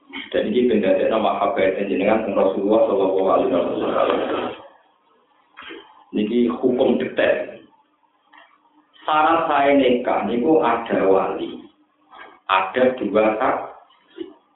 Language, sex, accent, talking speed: Indonesian, male, native, 85 wpm